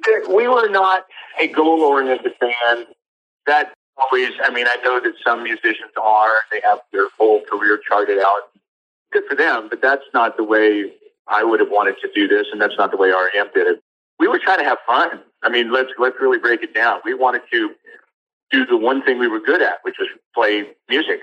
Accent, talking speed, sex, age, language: American, 210 wpm, male, 50-69, English